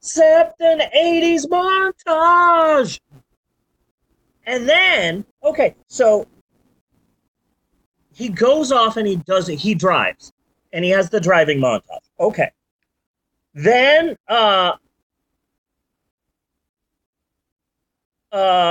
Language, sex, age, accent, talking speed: English, male, 30-49, American, 85 wpm